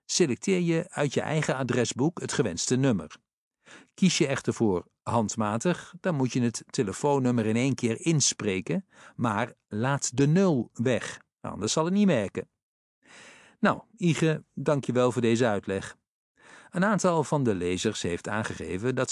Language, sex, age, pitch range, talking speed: Dutch, male, 50-69, 115-160 Hz, 155 wpm